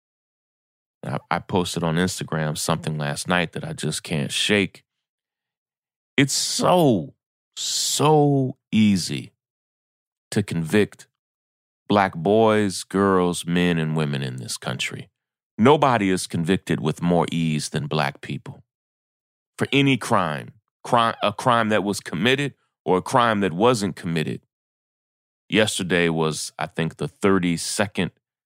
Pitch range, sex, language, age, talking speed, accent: 85-110 Hz, male, English, 30-49, 120 wpm, American